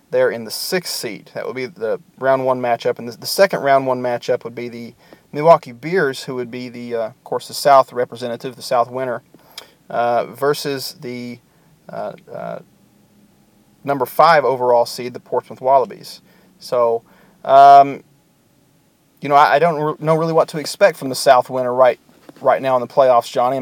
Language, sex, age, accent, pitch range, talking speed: English, male, 40-59, American, 125-155 Hz, 190 wpm